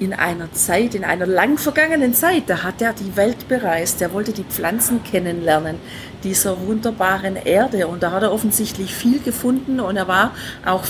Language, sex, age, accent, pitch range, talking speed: German, female, 50-69, German, 185-240 Hz, 180 wpm